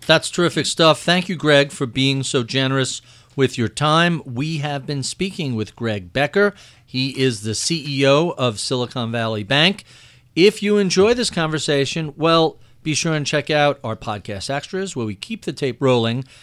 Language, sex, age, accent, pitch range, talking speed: English, male, 50-69, American, 125-170 Hz, 175 wpm